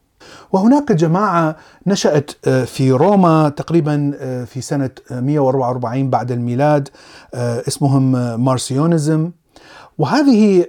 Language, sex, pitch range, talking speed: Arabic, male, 130-175 Hz, 80 wpm